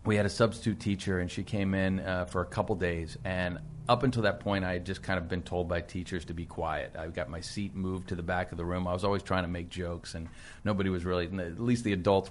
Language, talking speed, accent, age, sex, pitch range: English, 275 wpm, American, 40-59, male, 90-105 Hz